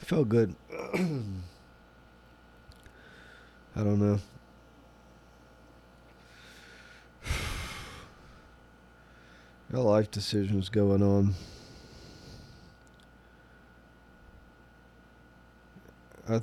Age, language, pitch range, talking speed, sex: 20-39, English, 65-105 Hz, 45 wpm, male